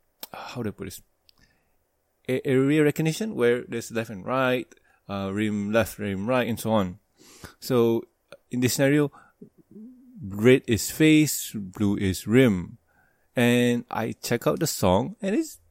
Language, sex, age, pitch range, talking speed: English, male, 20-39, 105-155 Hz, 150 wpm